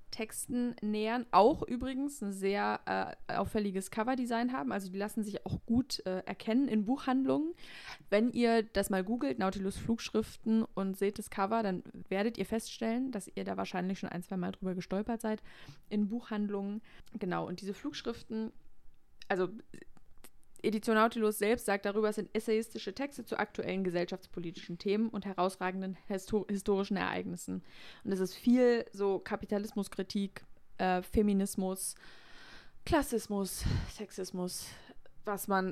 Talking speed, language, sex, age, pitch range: 140 wpm, German, female, 20-39, 190-230 Hz